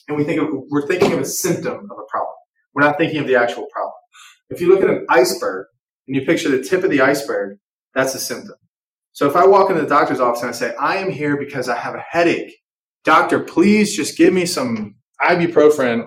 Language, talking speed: English, 230 wpm